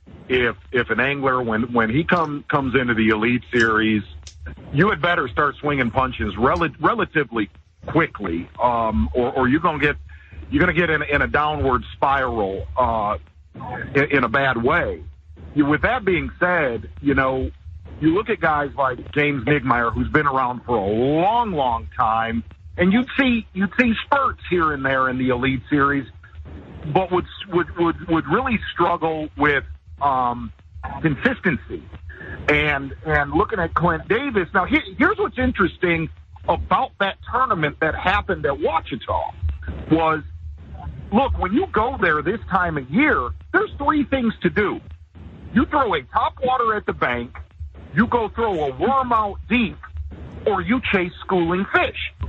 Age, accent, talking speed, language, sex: 50-69, American, 160 wpm, English, male